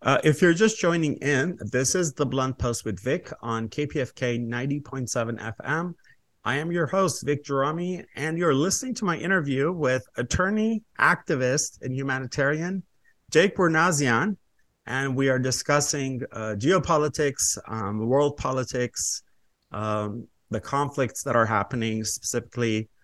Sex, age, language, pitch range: male, 30-49, English, 105-140 Hz